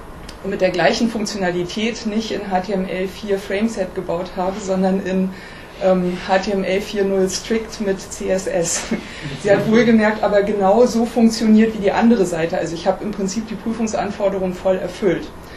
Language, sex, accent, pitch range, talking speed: German, female, German, 185-220 Hz, 145 wpm